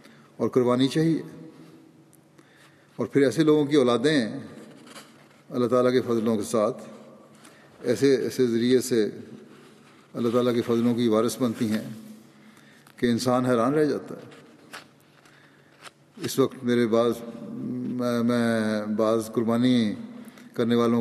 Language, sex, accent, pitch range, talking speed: English, male, Indian, 115-130 Hz, 90 wpm